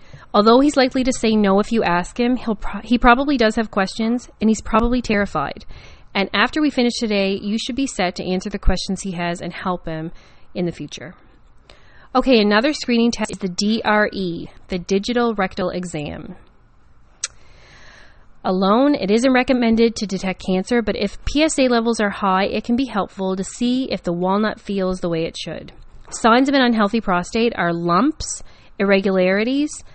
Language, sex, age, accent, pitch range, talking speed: English, female, 30-49, American, 185-235 Hz, 175 wpm